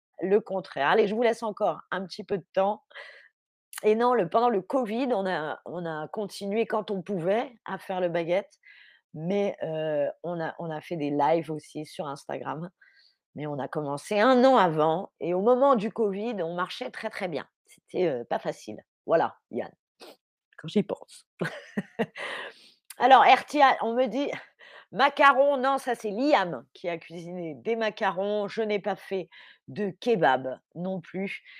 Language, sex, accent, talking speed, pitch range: French, female, French, 165 wpm, 180-255 Hz